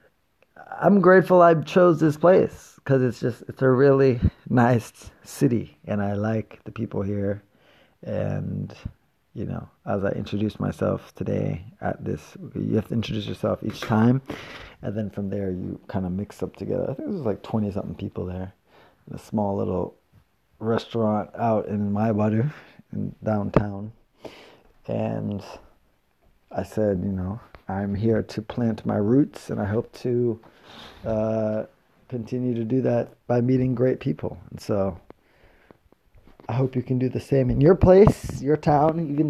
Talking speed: 160 wpm